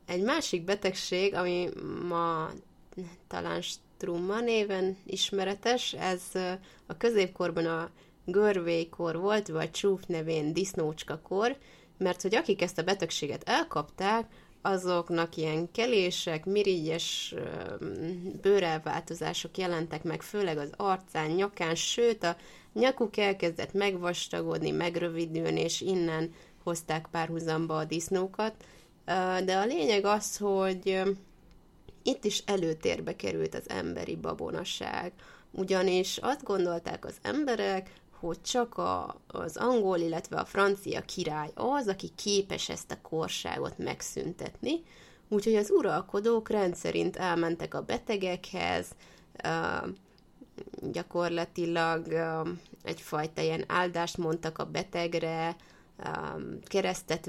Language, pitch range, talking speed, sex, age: Hungarian, 165-195 Hz, 100 wpm, female, 20-39